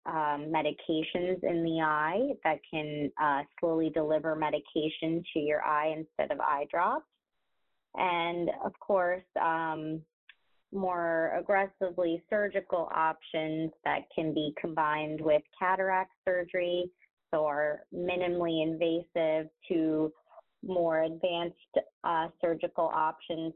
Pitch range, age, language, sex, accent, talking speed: 155-180 Hz, 30-49, English, female, American, 110 wpm